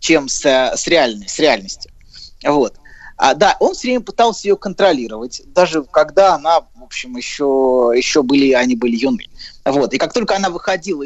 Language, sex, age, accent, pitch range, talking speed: Russian, male, 30-49, native, 150-225 Hz, 165 wpm